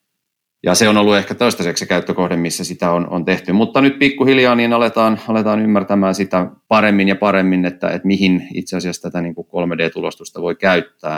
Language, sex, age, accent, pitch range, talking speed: Finnish, male, 30-49, native, 80-100 Hz, 175 wpm